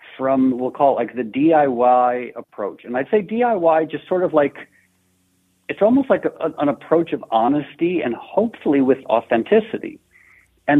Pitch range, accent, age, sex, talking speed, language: 110-160 Hz, American, 50-69, male, 155 wpm, English